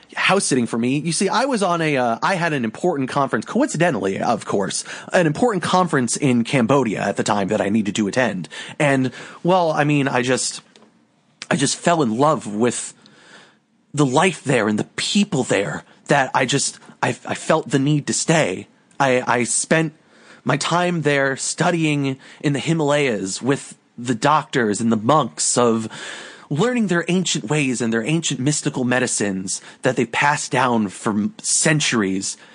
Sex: male